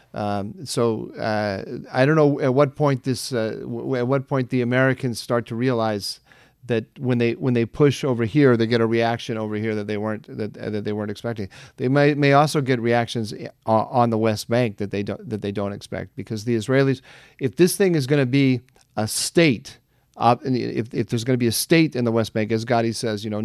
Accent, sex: American, male